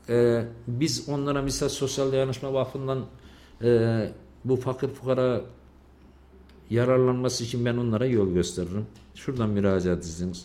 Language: Turkish